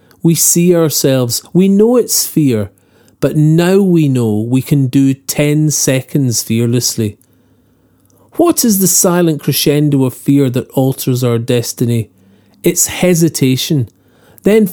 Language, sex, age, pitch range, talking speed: English, male, 40-59, 120-165 Hz, 125 wpm